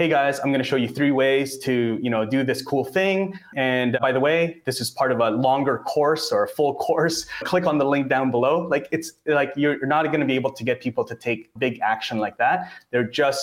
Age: 20-39